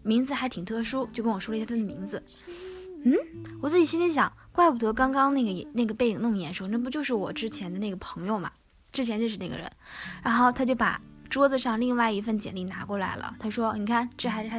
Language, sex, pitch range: Chinese, female, 195-250 Hz